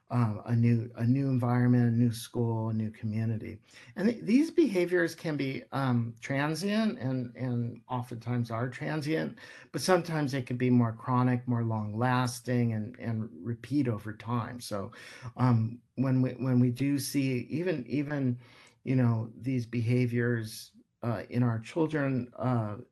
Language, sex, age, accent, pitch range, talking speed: English, male, 50-69, American, 120-140 Hz, 155 wpm